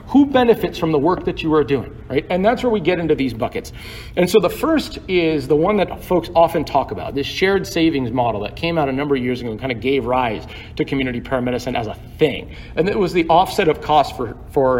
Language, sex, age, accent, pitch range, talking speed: English, male, 40-59, American, 130-175 Hz, 245 wpm